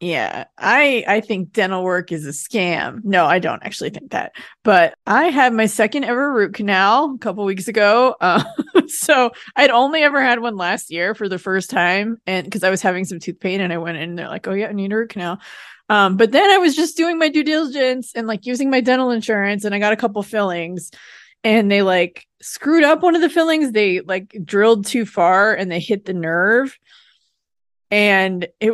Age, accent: 20-39, American